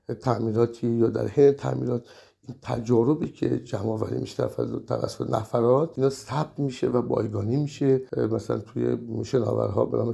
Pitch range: 115-140 Hz